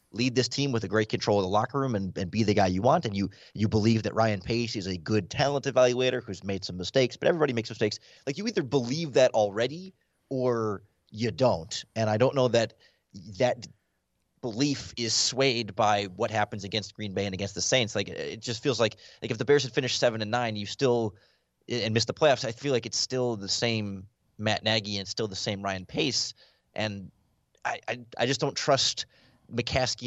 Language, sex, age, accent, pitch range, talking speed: English, male, 30-49, American, 105-125 Hz, 220 wpm